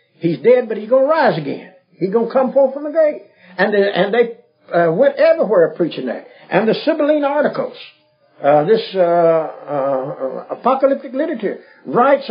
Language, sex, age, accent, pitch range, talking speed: English, male, 60-79, American, 160-240 Hz, 170 wpm